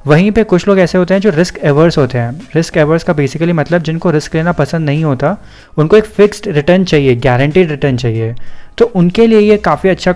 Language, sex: Hindi, male